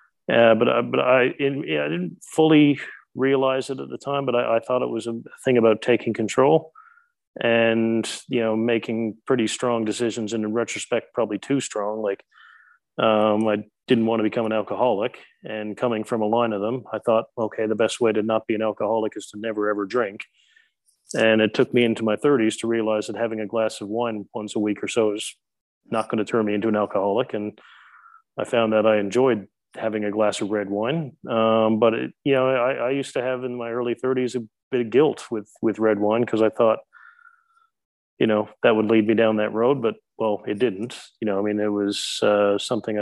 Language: English